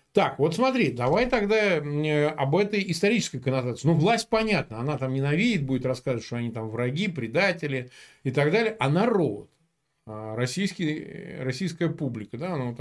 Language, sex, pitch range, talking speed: Russian, male, 120-165 Hz, 155 wpm